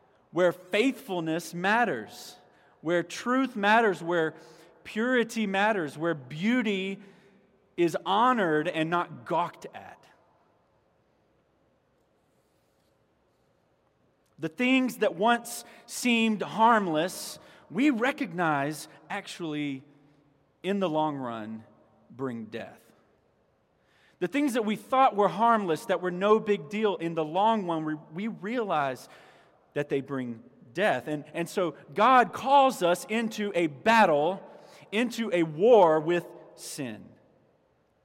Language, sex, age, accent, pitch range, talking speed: English, male, 30-49, American, 155-225 Hz, 110 wpm